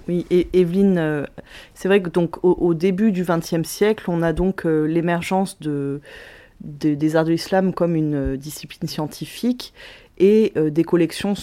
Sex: female